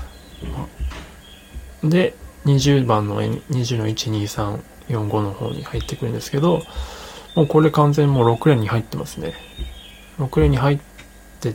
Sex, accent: male, native